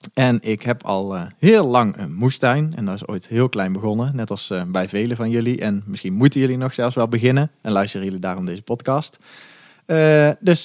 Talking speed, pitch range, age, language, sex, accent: 220 wpm, 110-150 Hz, 20-39, Dutch, male, Dutch